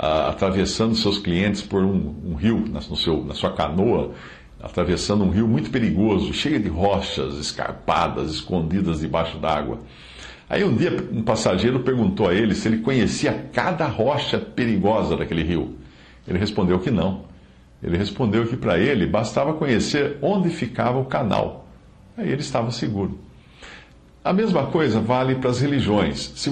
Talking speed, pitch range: 145 wpm, 85-120 Hz